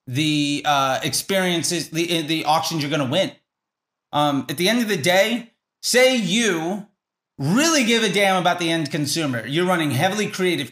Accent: American